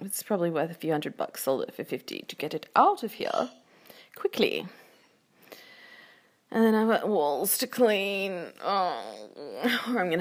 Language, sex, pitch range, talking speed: English, female, 170-270 Hz, 170 wpm